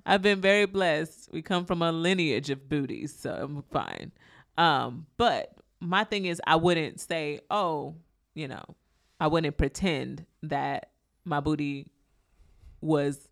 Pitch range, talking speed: 145-180 Hz, 145 wpm